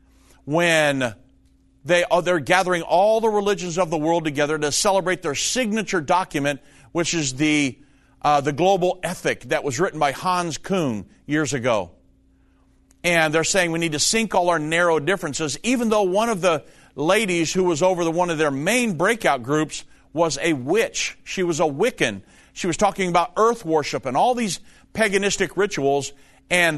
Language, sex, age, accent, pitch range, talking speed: English, male, 50-69, American, 145-190 Hz, 175 wpm